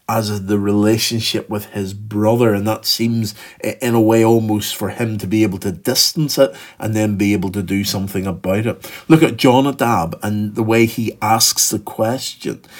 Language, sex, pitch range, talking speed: English, male, 100-120 Hz, 190 wpm